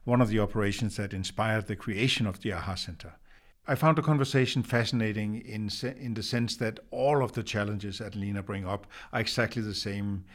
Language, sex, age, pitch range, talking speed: English, male, 50-69, 100-120 Hz, 205 wpm